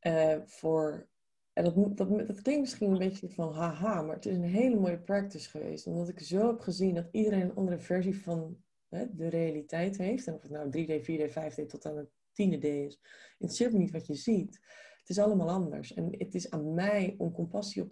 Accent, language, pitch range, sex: Dutch, Dutch, 160-200 Hz, female